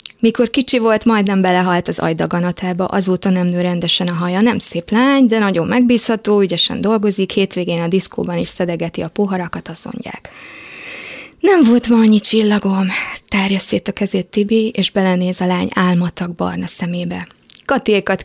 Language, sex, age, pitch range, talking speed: Hungarian, female, 20-39, 180-215 Hz, 155 wpm